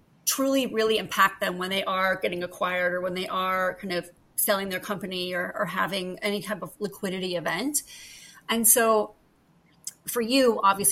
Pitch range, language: 190-225 Hz, English